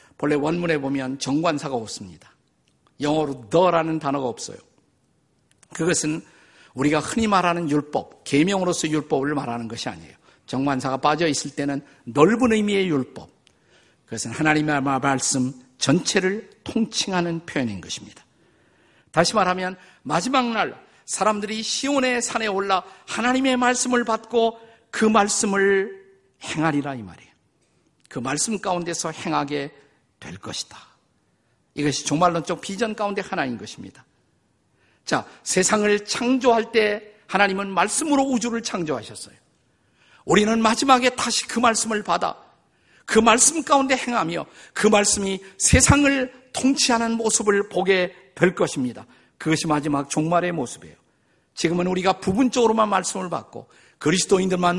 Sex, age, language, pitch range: male, 50-69, Korean, 155-230 Hz